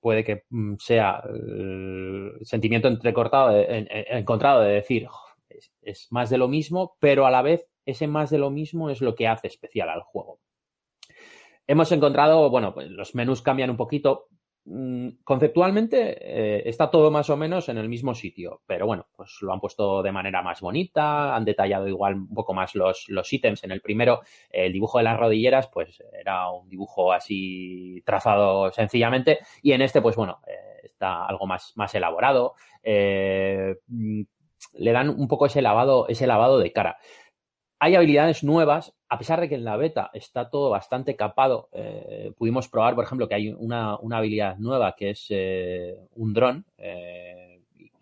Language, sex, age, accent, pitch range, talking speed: Spanish, male, 30-49, Spanish, 100-135 Hz, 170 wpm